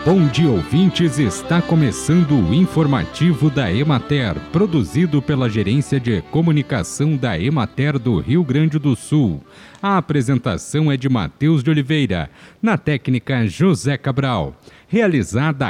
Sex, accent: male, Brazilian